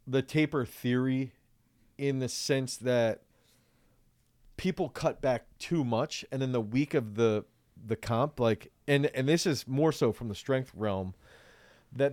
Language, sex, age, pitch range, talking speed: English, male, 30-49, 110-140 Hz, 160 wpm